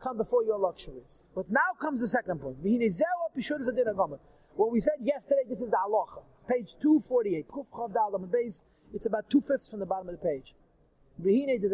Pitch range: 210-255 Hz